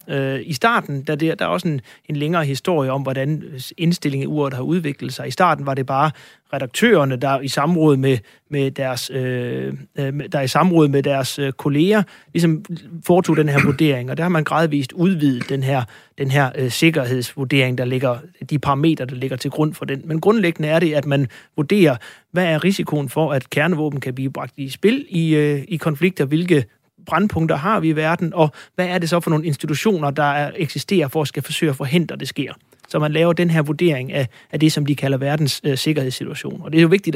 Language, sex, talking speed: Danish, male, 210 wpm